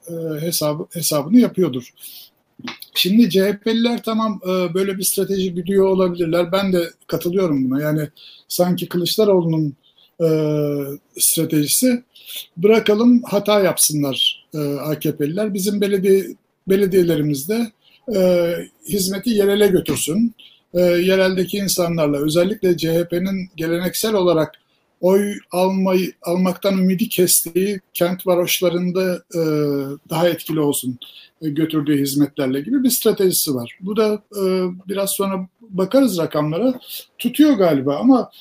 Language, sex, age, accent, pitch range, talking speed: Turkish, male, 60-79, native, 155-205 Hz, 100 wpm